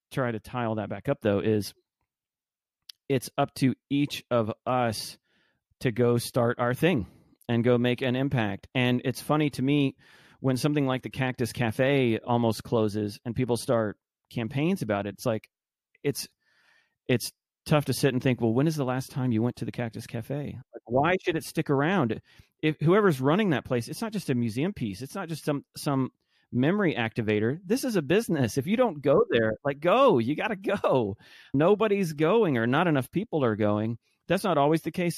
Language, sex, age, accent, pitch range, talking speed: English, male, 30-49, American, 115-145 Hz, 195 wpm